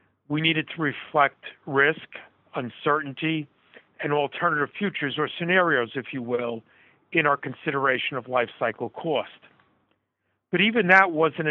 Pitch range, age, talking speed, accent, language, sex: 135-175 Hz, 50-69, 130 wpm, American, English, male